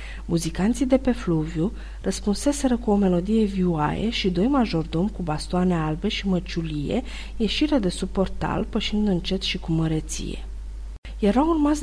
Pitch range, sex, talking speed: 170-225 Hz, female, 140 wpm